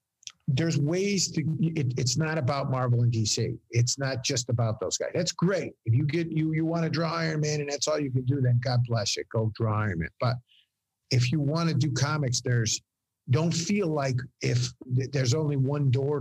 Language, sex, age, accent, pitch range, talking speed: English, male, 50-69, American, 120-155 Hz, 215 wpm